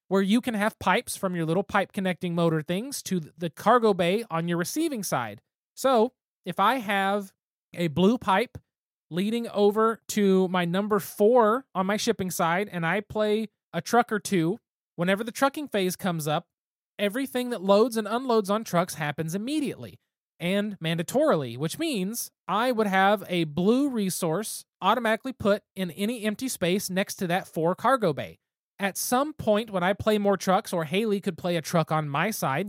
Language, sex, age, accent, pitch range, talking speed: English, male, 20-39, American, 175-220 Hz, 180 wpm